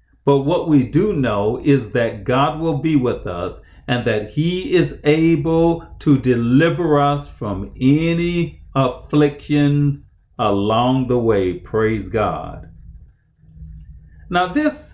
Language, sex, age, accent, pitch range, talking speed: English, male, 40-59, American, 105-150 Hz, 120 wpm